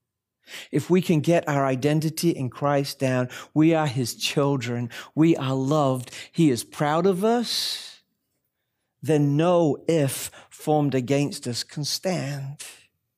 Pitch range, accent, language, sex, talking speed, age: 145-195 Hz, American, English, male, 130 wpm, 50-69